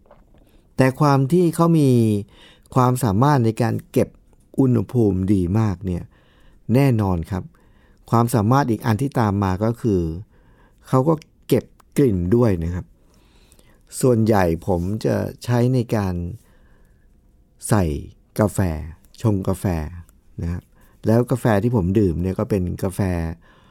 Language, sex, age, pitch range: Thai, male, 60-79, 95-130 Hz